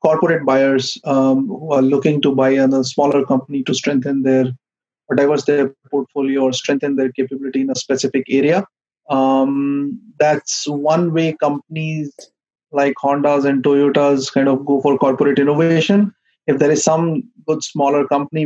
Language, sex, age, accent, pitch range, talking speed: English, male, 30-49, Indian, 135-155 Hz, 155 wpm